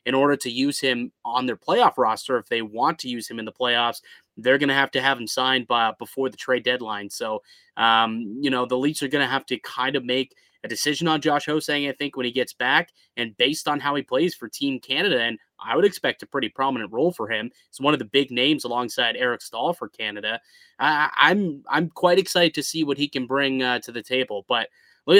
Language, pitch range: English, 120-145 Hz